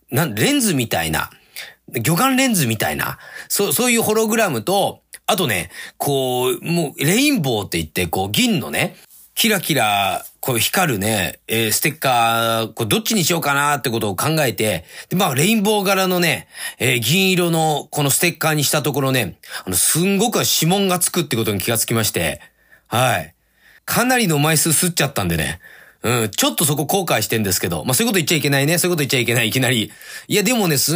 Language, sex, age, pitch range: Japanese, male, 40-59, 120-185 Hz